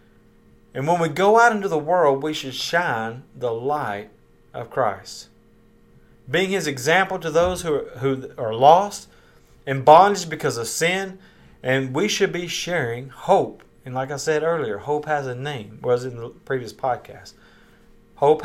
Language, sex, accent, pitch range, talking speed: English, male, American, 115-160 Hz, 170 wpm